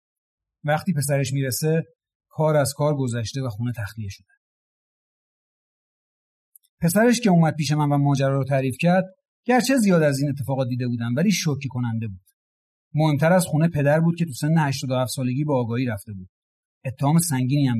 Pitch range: 125-170 Hz